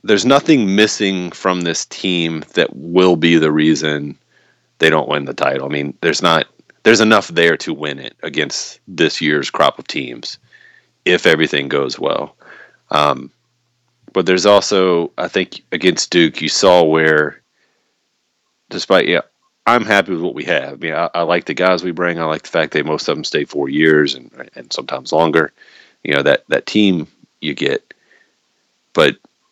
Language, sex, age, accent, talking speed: English, male, 30-49, American, 180 wpm